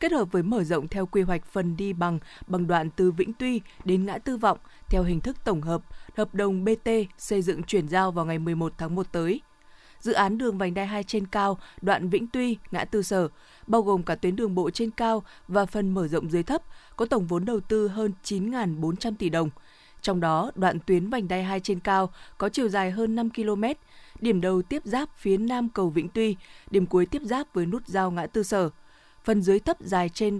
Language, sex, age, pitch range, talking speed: Vietnamese, female, 20-39, 175-220 Hz, 225 wpm